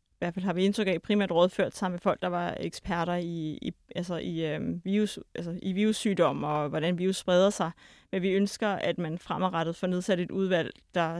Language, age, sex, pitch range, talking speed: Danish, 30-49, female, 175-200 Hz, 220 wpm